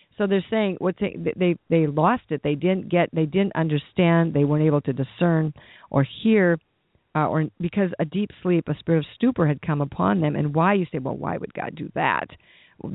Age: 50-69